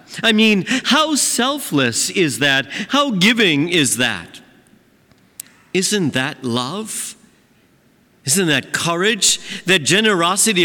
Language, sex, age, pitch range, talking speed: English, male, 50-69, 130-185 Hz, 100 wpm